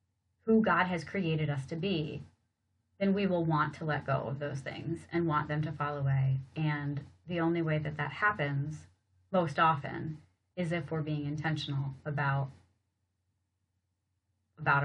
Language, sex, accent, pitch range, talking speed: English, female, American, 145-185 Hz, 160 wpm